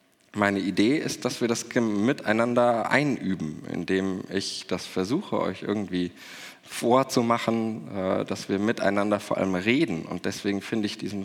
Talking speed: 140 wpm